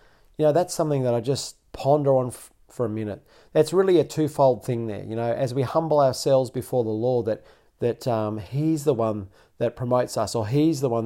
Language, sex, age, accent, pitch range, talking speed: English, male, 40-59, Australian, 115-150 Hz, 220 wpm